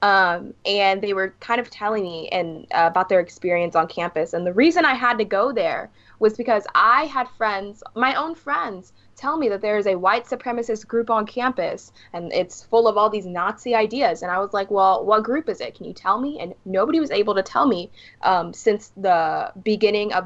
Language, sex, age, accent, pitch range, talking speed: English, female, 10-29, American, 185-265 Hz, 220 wpm